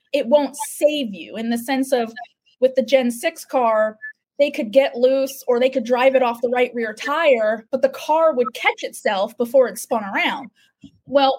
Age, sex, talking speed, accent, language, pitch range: 20-39, female, 200 wpm, American, English, 235-275 Hz